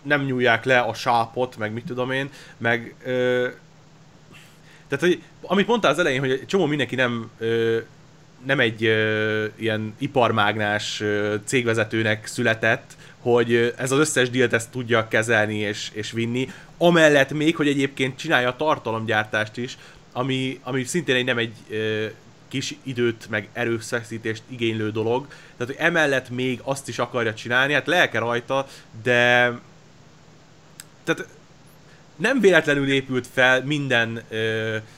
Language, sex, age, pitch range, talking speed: Hungarian, male, 30-49, 115-145 Hz, 140 wpm